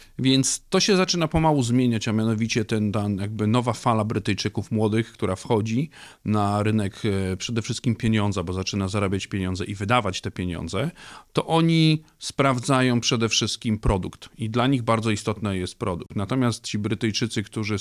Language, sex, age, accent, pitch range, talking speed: Polish, male, 40-59, native, 105-125 Hz, 165 wpm